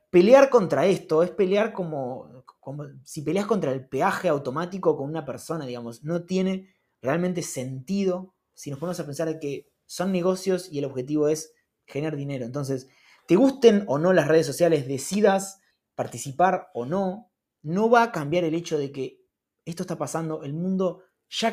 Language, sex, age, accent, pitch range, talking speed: Spanish, male, 20-39, Argentinian, 135-175 Hz, 170 wpm